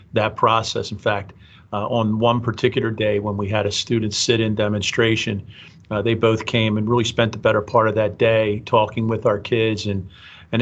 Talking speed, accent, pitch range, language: 200 wpm, American, 105-120 Hz, English